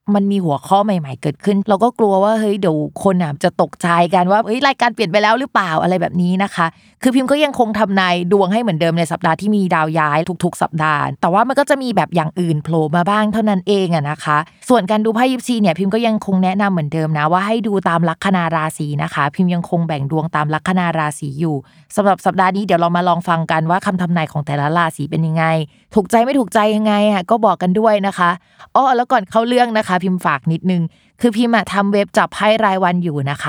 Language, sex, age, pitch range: Thai, female, 20-39, 160-210 Hz